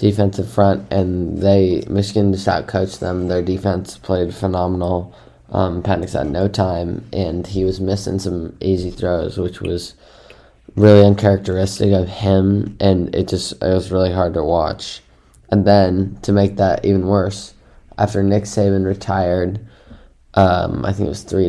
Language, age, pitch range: English, 20-39, 90-100 Hz